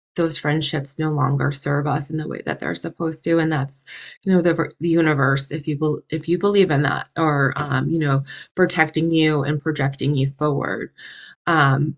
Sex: female